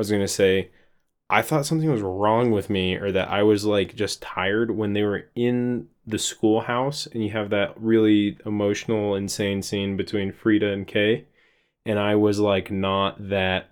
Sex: male